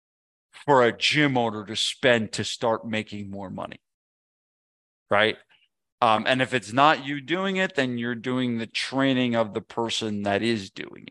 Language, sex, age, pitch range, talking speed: English, male, 40-59, 100-120 Hz, 165 wpm